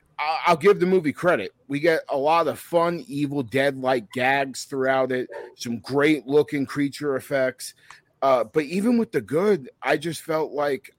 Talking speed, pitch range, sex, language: 165 wpm, 125-160 Hz, male, English